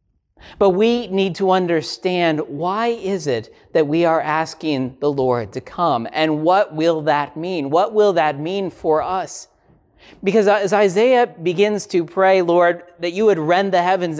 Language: English